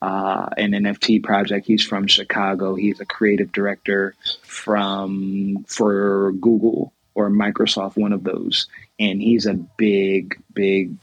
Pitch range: 95-110 Hz